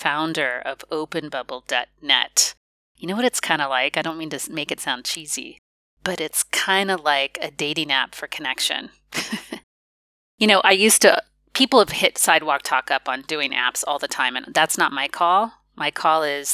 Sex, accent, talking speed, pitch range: female, American, 190 wpm, 150-185 Hz